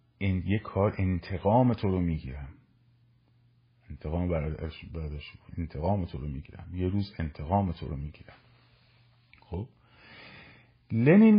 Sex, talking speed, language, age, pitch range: male, 95 wpm, Persian, 50-69, 95-125 Hz